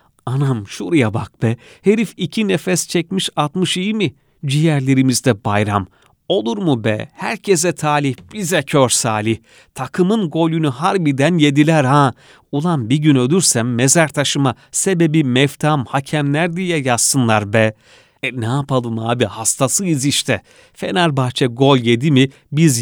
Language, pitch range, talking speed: Turkish, 115-155 Hz, 130 wpm